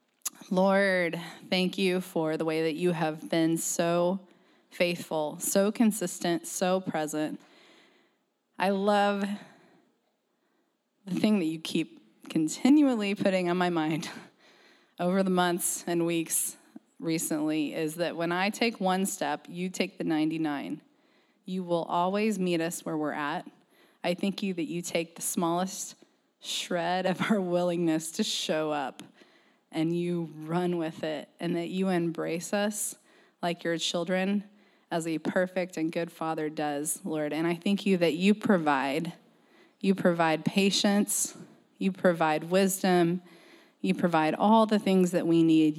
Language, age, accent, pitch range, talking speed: English, 20-39, American, 165-205 Hz, 145 wpm